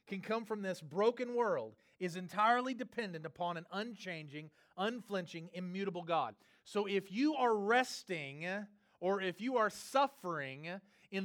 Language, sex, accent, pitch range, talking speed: English, male, American, 160-225 Hz, 140 wpm